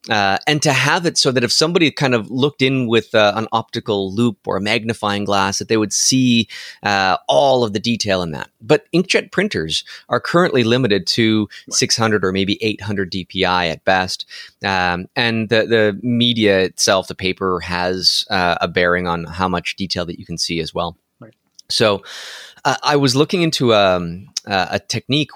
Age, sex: 30-49, male